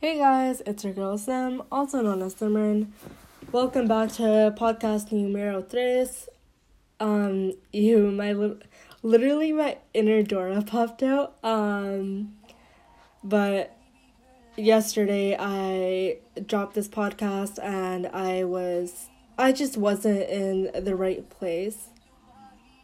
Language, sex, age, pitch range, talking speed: English, female, 10-29, 195-230 Hz, 110 wpm